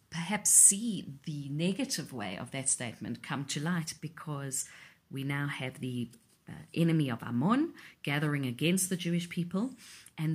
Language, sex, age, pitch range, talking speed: English, female, 40-59, 140-180 Hz, 145 wpm